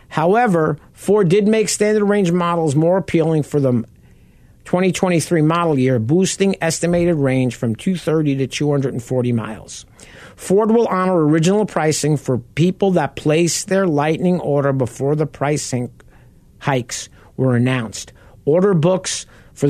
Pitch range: 145-185 Hz